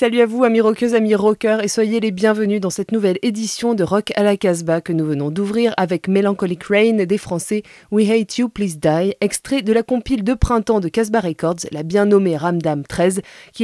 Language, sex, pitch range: French, female, 170-220 Hz